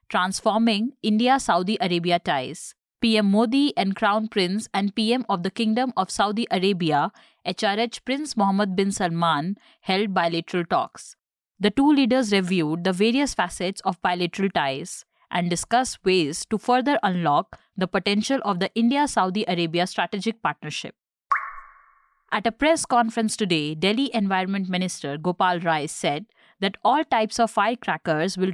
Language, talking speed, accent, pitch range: English, 140 wpm, Indian, 175-225 Hz